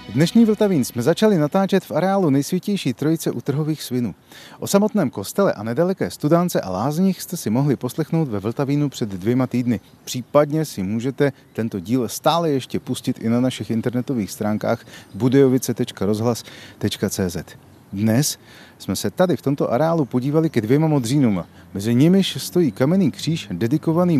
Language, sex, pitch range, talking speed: Czech, male, 115-170 Hz, 145 wpm